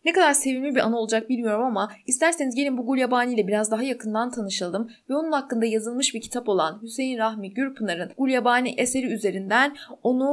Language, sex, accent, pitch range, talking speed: Turkish, female, native, 220-295 Hz, 190 wpm